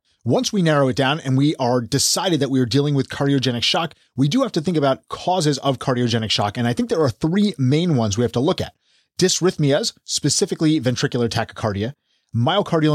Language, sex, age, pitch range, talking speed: English, male, 30-49, 130-155 Hz, 205 wpm